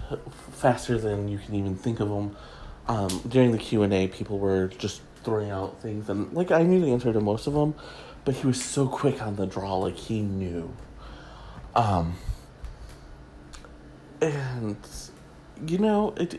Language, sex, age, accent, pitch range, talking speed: English, male, 30-49, American, 95-125 Hz, 170 wpm